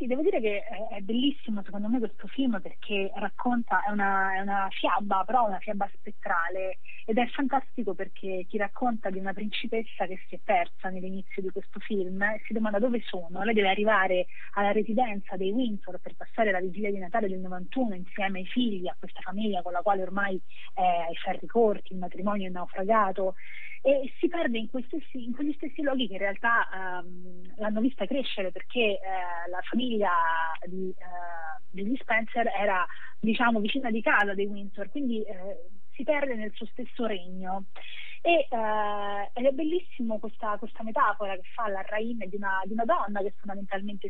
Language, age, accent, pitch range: Italian, 30-49, native, 190-245 Hz